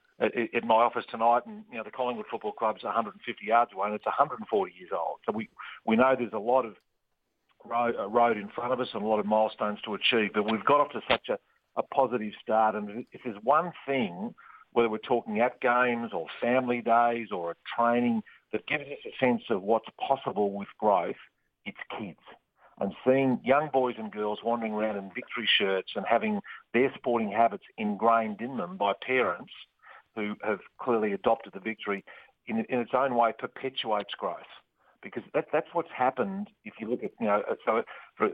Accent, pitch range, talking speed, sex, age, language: Australian, 110-130 Hz, 195 wpm, male, 50-69, English